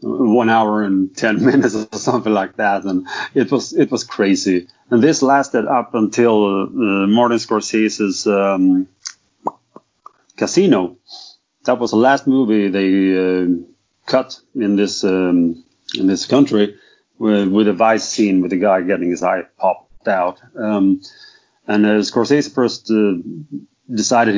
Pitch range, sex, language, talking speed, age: 95-115 Hz, male, English, 145 wpm, 30-49